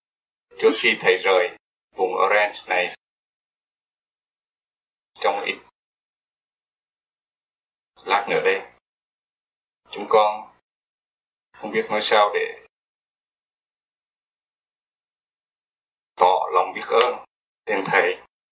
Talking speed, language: 80 wpm, Vietnamese